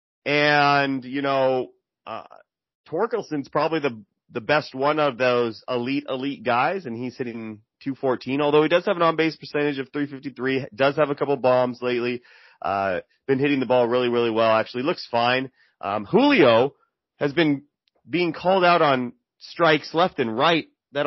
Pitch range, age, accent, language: 120-145 Hz, 30-49, American, English